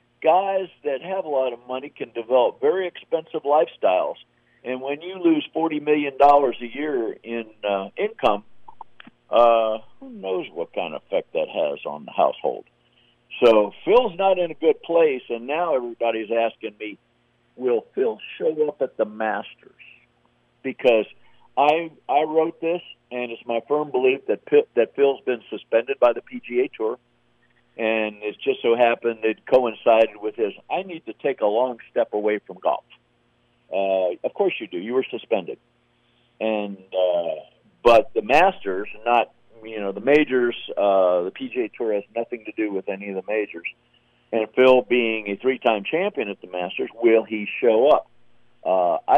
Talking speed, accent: 170 wpm, American